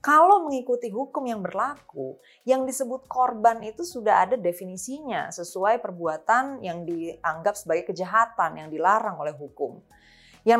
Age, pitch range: 20-39, 175-260 Hz